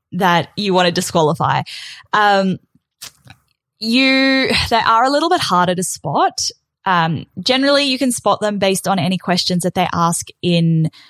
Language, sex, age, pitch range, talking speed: English, female, 10-29, 165-195 Hz, 155 wpm